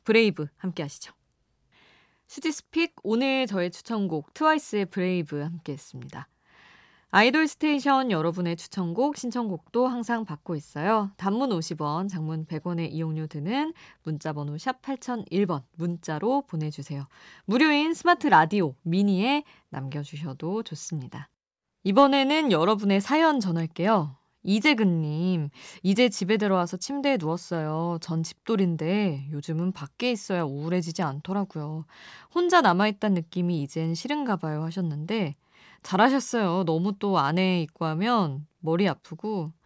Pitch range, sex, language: 160-220 Hz, female, Korean